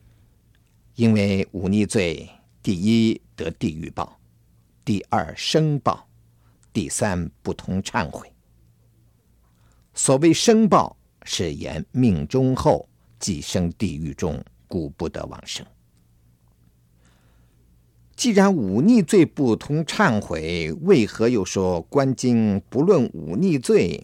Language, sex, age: Chinese, male, 50-69